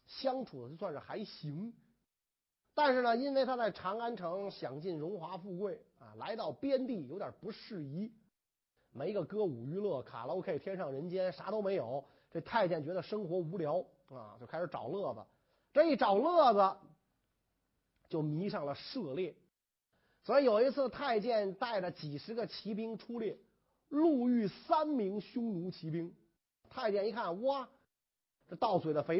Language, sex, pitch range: Chinese, male, 170-245 Hz